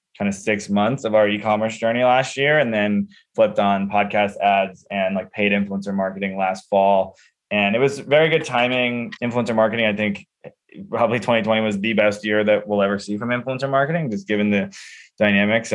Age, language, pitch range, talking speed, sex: 20-39, English, 100-115 Hz, 190 wpm, male